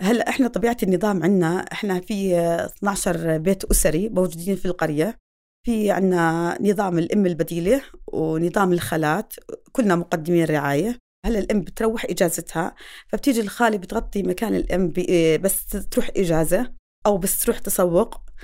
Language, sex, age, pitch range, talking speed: Arabic, female, 30-49, 175-225 Hz, 125 wpm